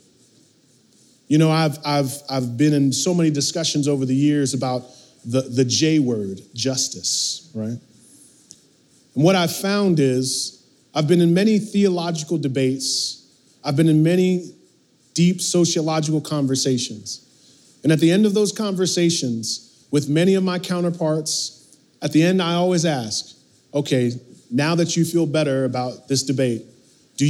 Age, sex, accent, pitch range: 30-49, male, American, 135-175 Hz